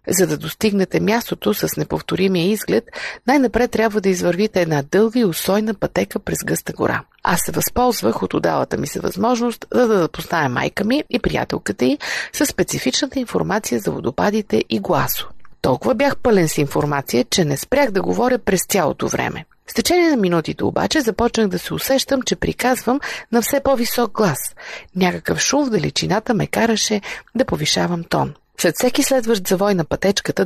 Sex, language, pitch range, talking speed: female, Bulgarian, 170-235 Hz, 170 wpm